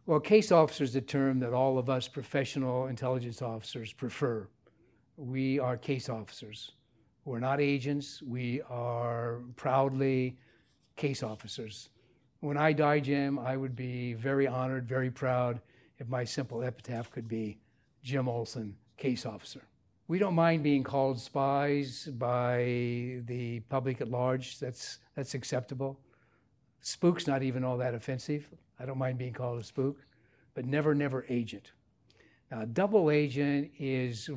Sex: male